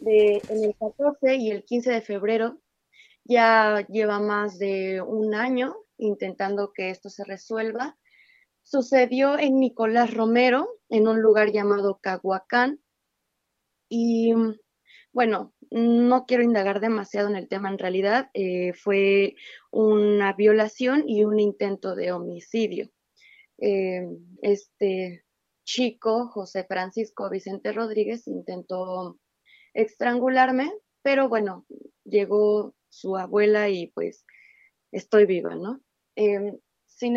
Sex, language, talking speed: female, Spanish, 115 wpm